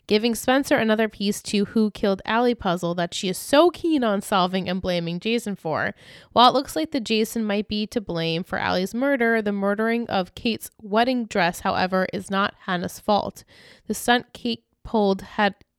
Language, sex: English, female